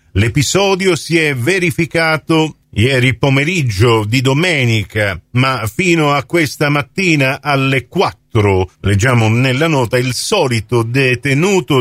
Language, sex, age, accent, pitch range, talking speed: Italian, male, 50-69, native, 120-170 Hz, 105 wpm